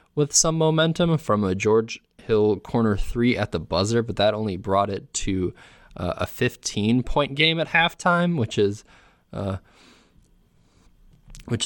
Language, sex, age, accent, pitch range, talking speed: English, male, 20-39, American, 100-120 Hz, 150 wpm